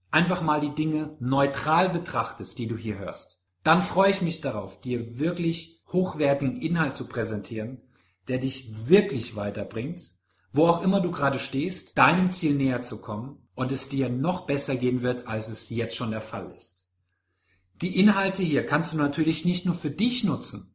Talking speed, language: 175 wpm, German